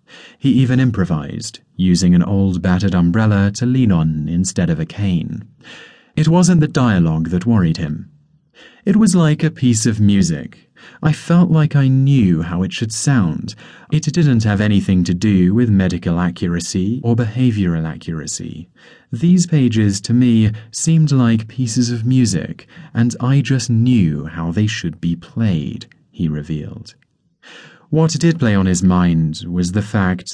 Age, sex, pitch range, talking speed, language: 30-49, male, 90-125 Hz, 155 wpm, English